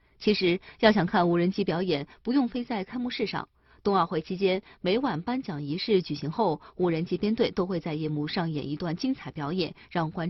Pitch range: 165-225 Hz